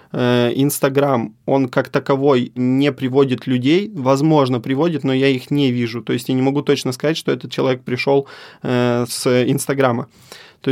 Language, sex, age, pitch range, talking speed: Russian, male, 20-39, 125-145 Hz, 155 wpm